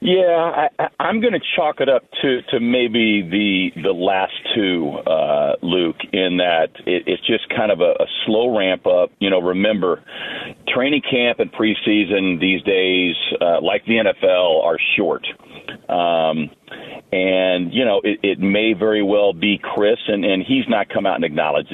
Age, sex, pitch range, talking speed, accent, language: 40-59, male, 95-120 Hz, 175 wpm, American, English